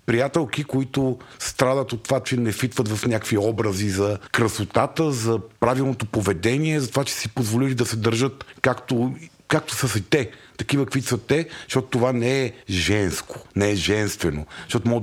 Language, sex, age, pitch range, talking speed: Bulgarian, male, 50-69, 105-130 Hz, 170 wpm